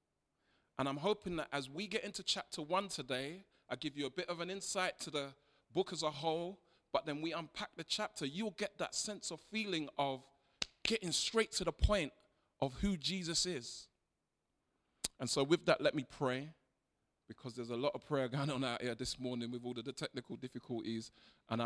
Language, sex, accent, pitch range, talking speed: English, male, British, 125-165 Hz, 200 wpm